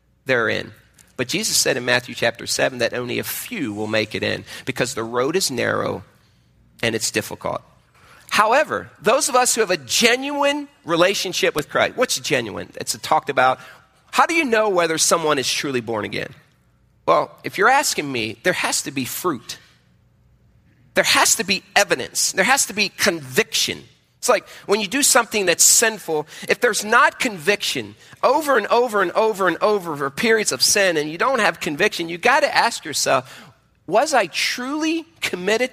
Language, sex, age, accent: English, male, 40-59, American